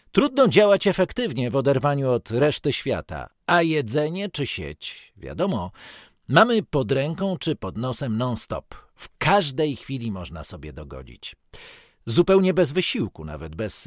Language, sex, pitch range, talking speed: Polish, male, 110-160 Hz, 135 wpm